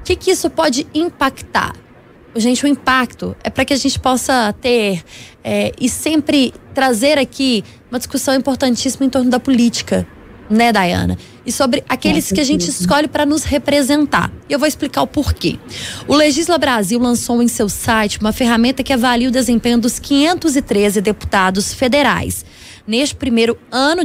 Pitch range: 225-285 Hz